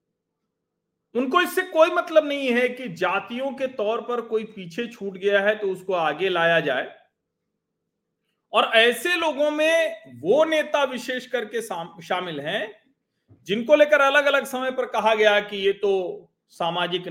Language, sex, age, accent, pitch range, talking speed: Hindi, male, 40-59, native, 170-245 Hz, 150 wpm